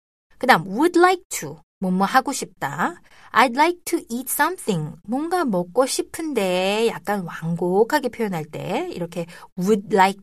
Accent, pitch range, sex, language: native, 175-270 Hz, female, Korean